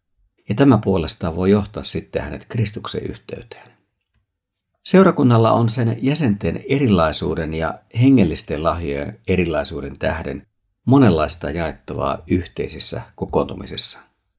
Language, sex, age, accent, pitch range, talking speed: Finnish, male, 50-69, native, 90-120 Hz, 95 wpm